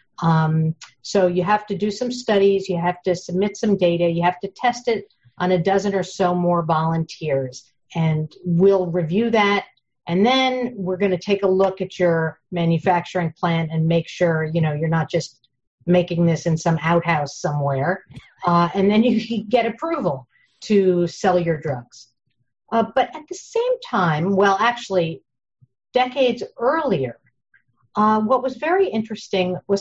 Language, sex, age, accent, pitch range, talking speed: English, female, 50-69, American, 170-210 Hz, 165 wpm